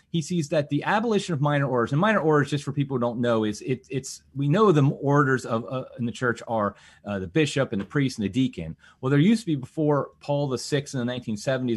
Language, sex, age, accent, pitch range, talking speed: English, male, 30-49, American, 115-155 Hz, 250 wpm